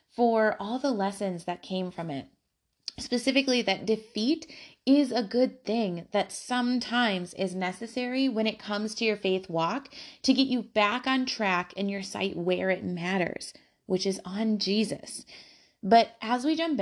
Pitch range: 200-265 Hz